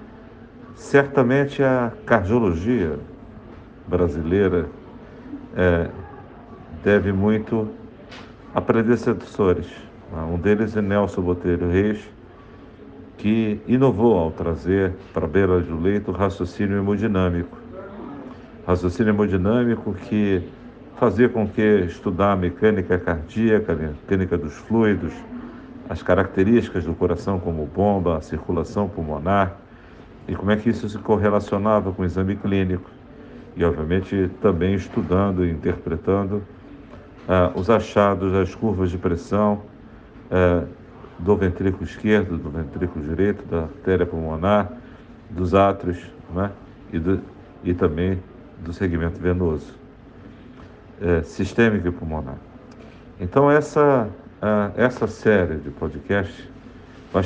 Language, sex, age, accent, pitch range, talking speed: Portuguese, male, 50-69, Brazilian, 90-110 Hz, 110 wpm